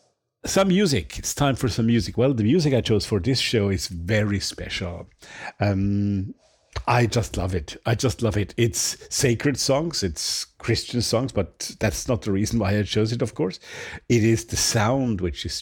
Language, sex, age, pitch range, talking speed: English, male, 50-69, 95-115 Hz, 190 wpm